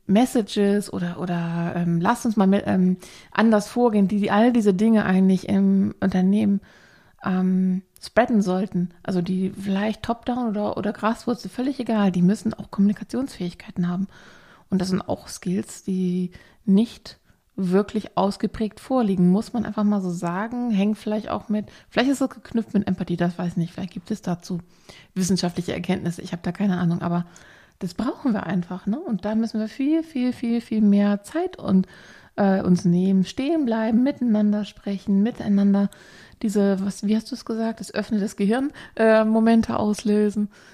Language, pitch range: German, 185-220 Hz